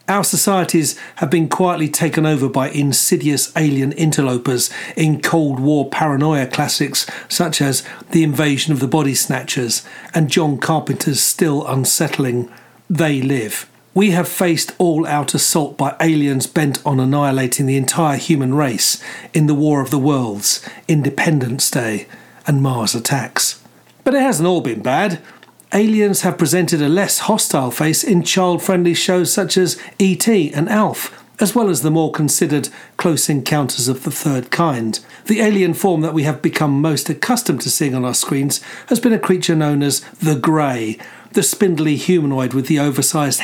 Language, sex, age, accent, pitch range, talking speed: English, male, 40-59, British, 140-175 Hz, 160 wpm